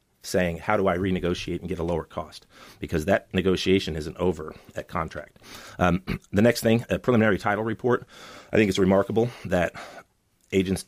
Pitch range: 85-100 Hz